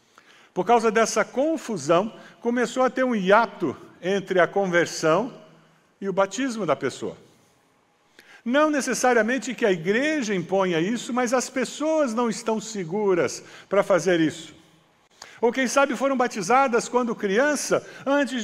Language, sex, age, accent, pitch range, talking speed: Portuguese, male, 60-79, Brazilian, 195-245 Hz, 135 wpm